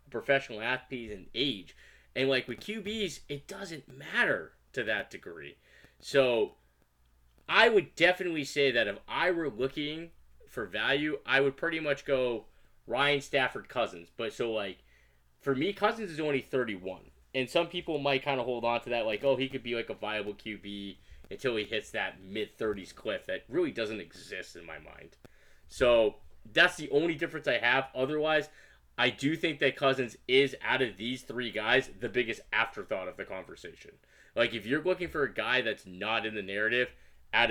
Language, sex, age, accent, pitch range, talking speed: English, male, 20-39, American, 100-140 Hz, 180 wpm